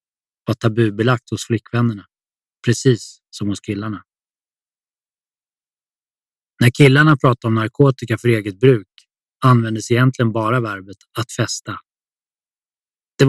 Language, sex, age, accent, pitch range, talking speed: Swedish, male, 20-39, native, 110-130 Hz, 100 wpm